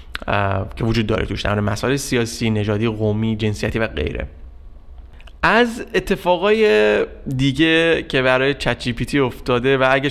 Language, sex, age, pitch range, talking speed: Persian, male, 20-39, 115-150 Hz, 130 wpm